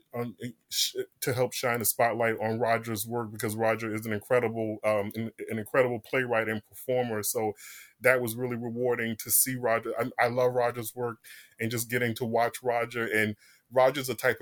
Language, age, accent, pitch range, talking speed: English, 20-39, American, 110-125 Hz, 180 wpm